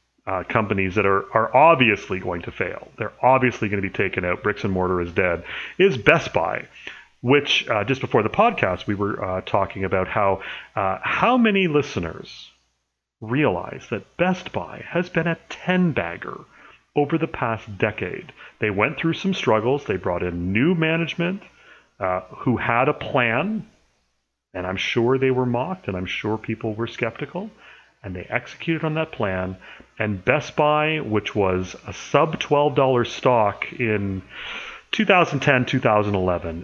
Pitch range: 95-150 Hz